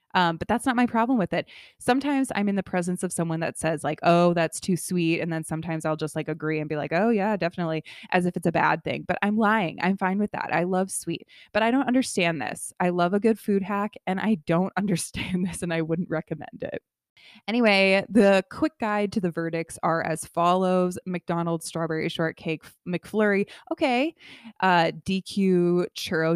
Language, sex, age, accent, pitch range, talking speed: English, female, 20-39, American, 180-230 Hz, 205 wpm